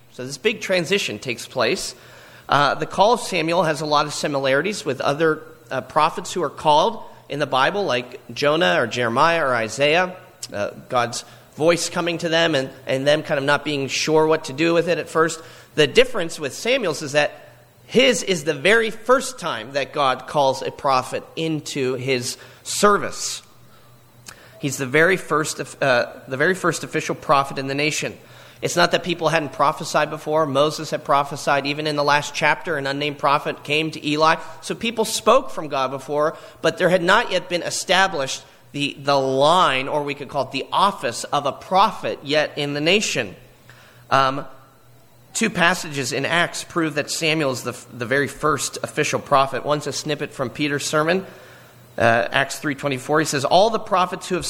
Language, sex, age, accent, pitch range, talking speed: English, male, 40-59, American, 135-170 Hz, 185 wpm